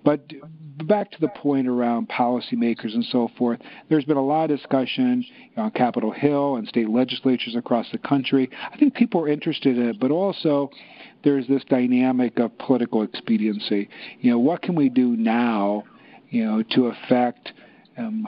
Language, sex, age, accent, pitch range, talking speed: English, male, 50-69, American, 115-150 Hz, 170 wpm